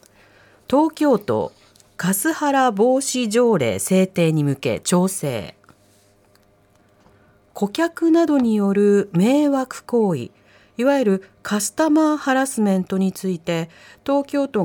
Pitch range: 175-265 Hz